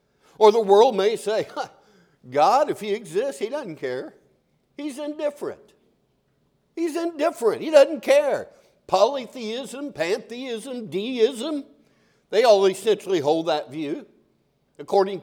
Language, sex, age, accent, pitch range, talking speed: English, male, 60-79, American, 190-310 Hz, 115 wpm